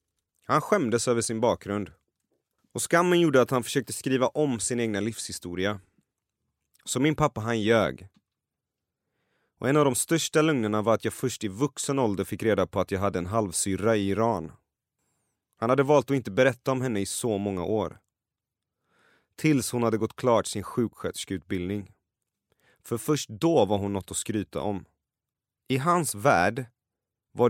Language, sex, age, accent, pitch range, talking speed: Swedish, male, 30-49, native, 100-130 Hz, 165 wpm